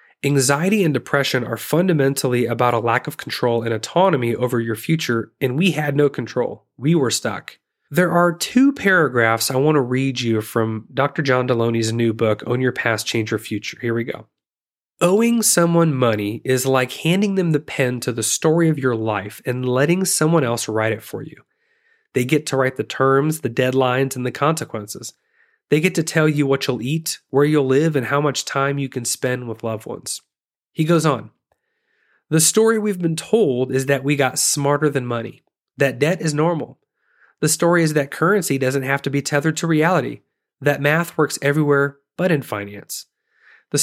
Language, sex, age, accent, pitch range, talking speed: English, male, 30-49, American, 125-160 Hz, 195 wpm